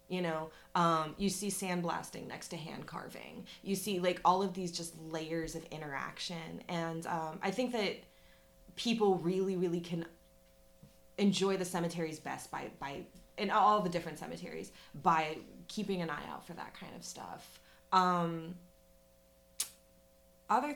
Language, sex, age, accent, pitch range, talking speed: English, female, 20-39, American, 155-185 Hz, 150 wpm